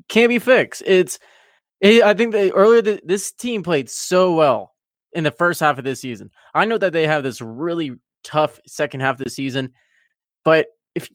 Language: English